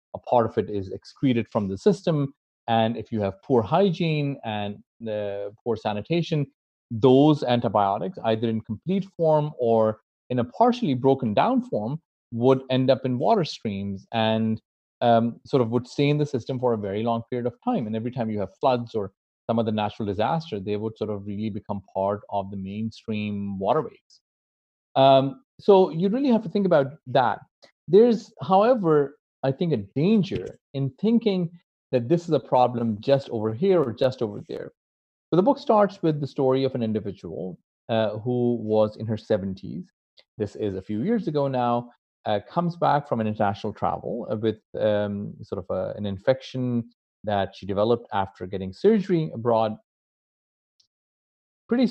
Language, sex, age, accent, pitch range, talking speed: English, male, 30-49, Indian, 105-150 Hz, 175 wpm